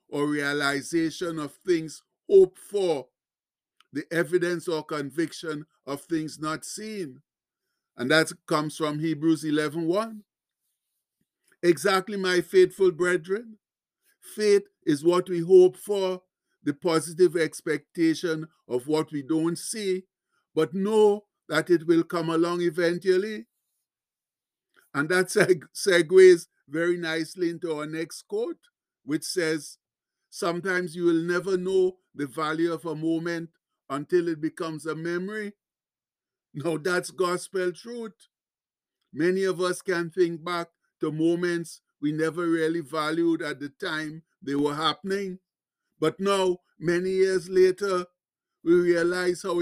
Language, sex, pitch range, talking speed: English, male, 160-185 Hz, 125 wpm